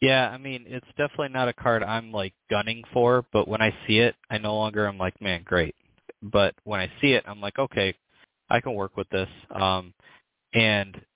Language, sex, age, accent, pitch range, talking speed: English, male, 20-39, American, 95-115 Hz, 210 wpm